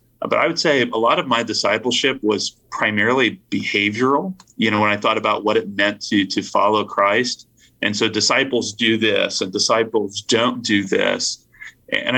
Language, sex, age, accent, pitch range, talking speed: English, male, 30-49, American, 105-120 Hz, 175 wpm